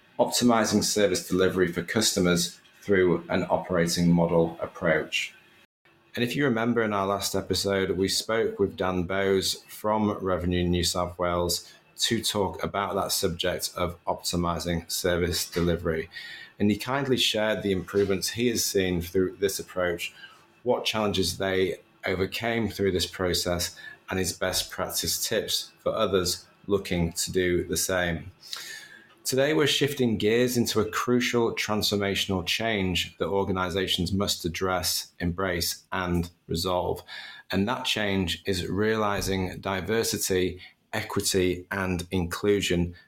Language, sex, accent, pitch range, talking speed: English, male, British, 90-105 Hz, 130 wpm